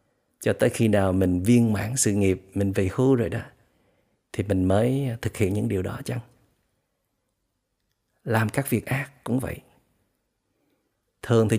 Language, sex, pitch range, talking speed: Vietnamese, male, 105-135 Hz, 160 wpm